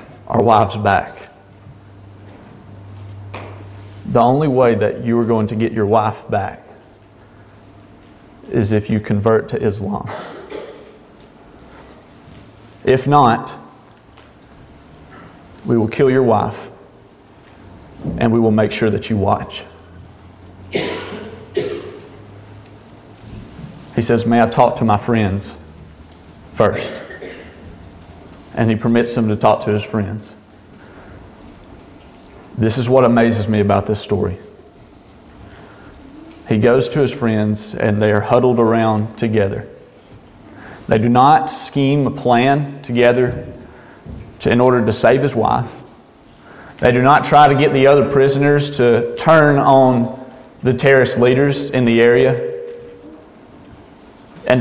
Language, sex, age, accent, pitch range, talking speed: English, male, 40-59, American, 105-125 Hz, 115 wpm